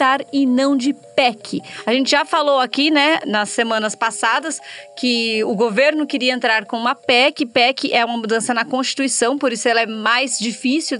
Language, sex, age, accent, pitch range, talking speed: Portuguese, female, 30-49, Brazilian, 250-300 Hz, 180 wpm